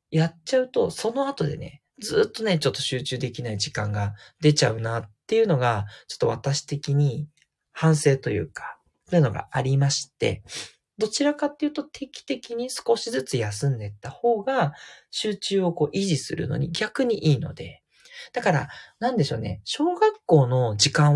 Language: Japanese